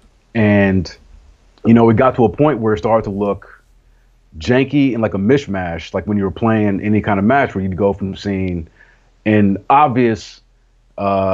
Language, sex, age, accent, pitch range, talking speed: English, male, 30-49, American, 95-115 Hz, 185 wpm